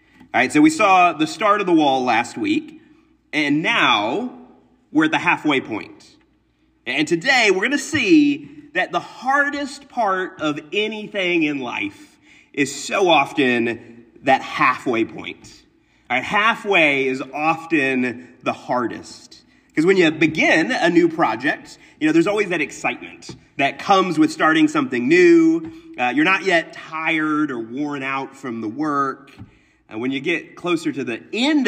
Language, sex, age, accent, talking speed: English, male, 30-49, American, 160 wpm